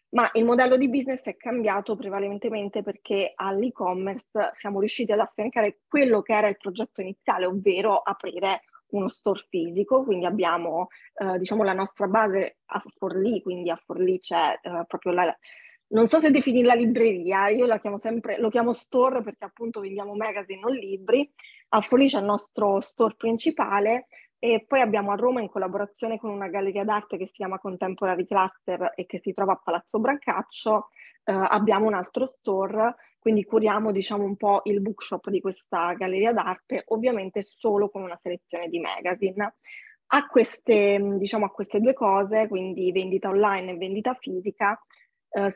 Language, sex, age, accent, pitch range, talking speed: Italian, female, 20-39, native, 195-230 Hz, 165 wpm